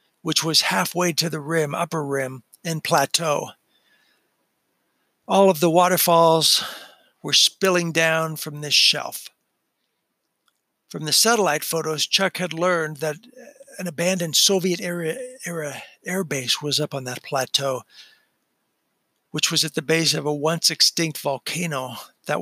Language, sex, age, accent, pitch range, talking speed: English, male, 60-79, American, 150-170 Hz, 130 wpm